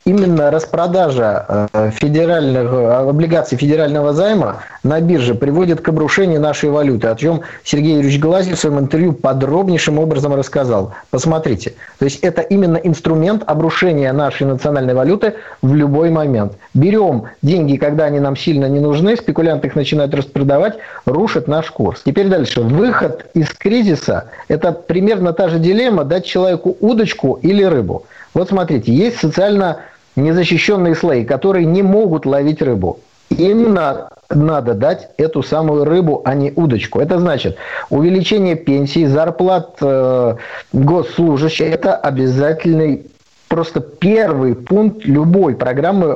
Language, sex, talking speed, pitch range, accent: Russian, male, 130 wpm, 140-180 Hz, native